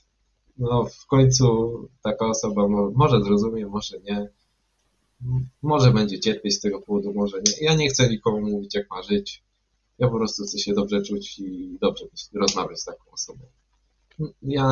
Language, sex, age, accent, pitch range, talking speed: Polish, male, 20-39, native, 105-135 Hz, 165 wpm